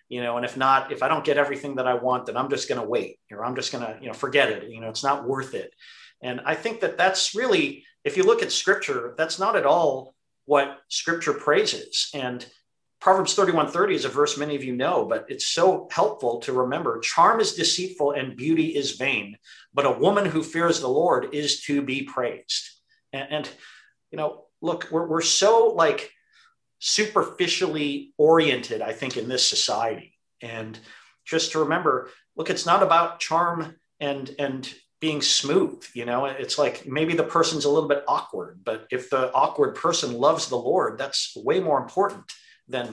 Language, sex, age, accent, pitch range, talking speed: English, male, 40-59, American, 130-180 Hz, 195 wpm